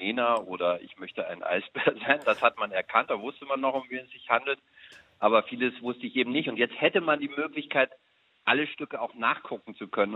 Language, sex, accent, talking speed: German, male, German, 220 wpm